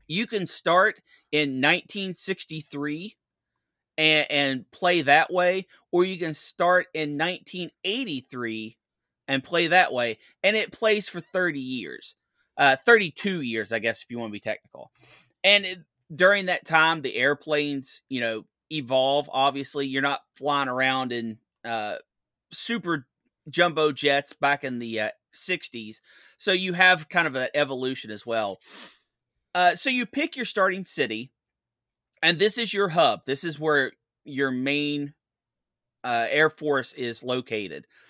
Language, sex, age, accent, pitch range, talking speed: English, male, 30-49, American, 130-180 Hz, 145 wpm